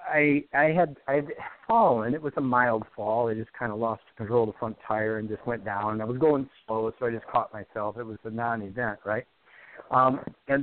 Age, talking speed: 50-69, 230 wpm